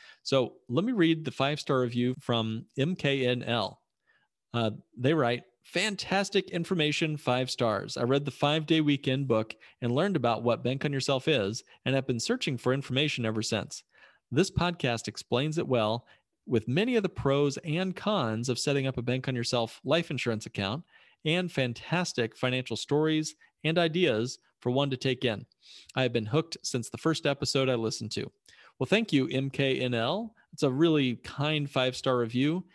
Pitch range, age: 120-155 Hz, 40-59